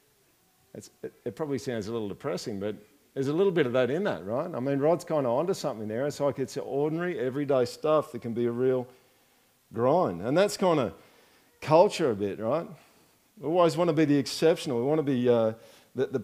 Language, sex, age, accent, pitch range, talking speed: English, male, 50-69, Australian, 130-175 Hz, 210 wpm